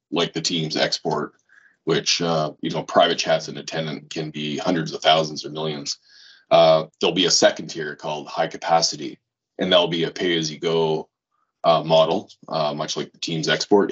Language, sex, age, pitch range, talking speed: English, male, 30-49, 80-95 Hz, 175 wpm